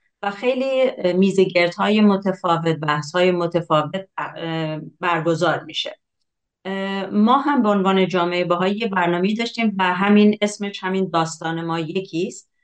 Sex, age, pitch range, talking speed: female, 40-59, 160-200 Hz, 120 wpm